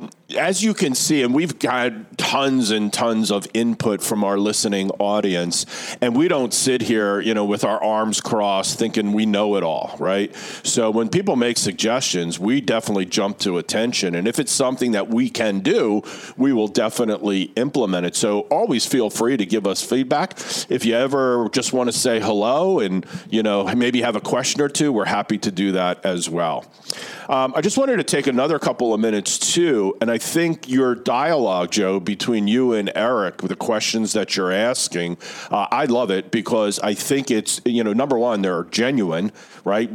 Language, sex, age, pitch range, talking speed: English, male, 40-59, 100-125 Hz, 195 wpm